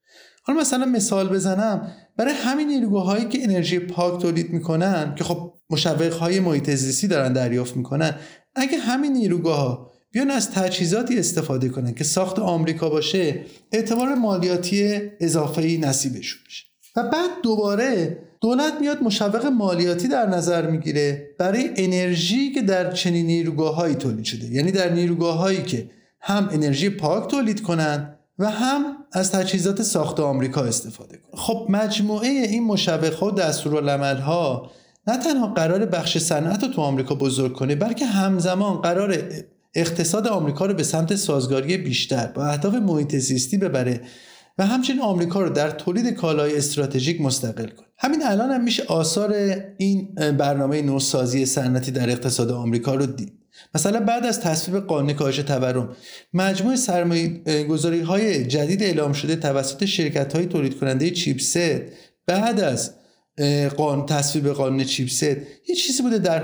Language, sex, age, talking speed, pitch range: Persian, male, 30-49, 145 wpm, 145-205 Hz